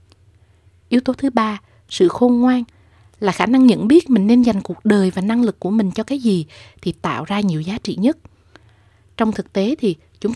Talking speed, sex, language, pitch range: 215 wpm, female, Vietnamese, 160-240 Hz